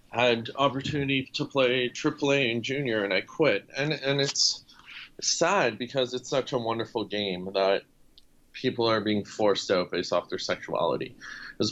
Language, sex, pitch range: English, male, 100-125 Hz